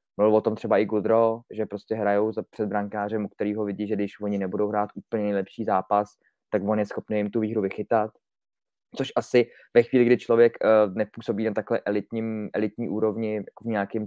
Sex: male